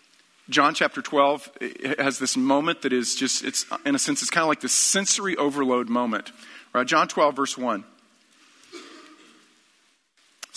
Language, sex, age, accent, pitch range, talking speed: English, male, 40-59, American, 135-220 Hz, 155 wpm